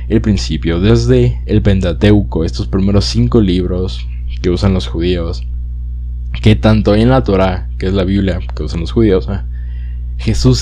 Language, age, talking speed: Spanish, 20-39, 165 wpm